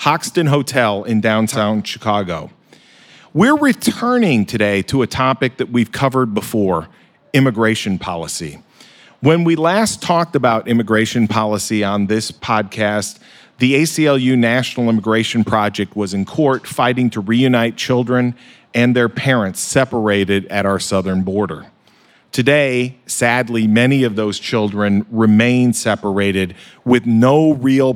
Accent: American